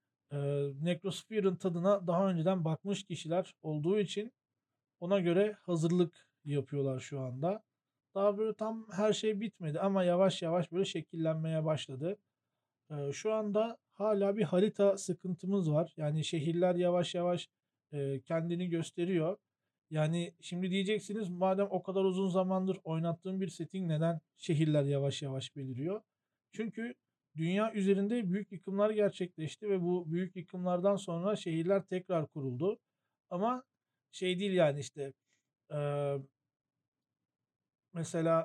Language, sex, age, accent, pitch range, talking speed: Turkish, male, 40-59, native, 155-195 Hz, 120 wpm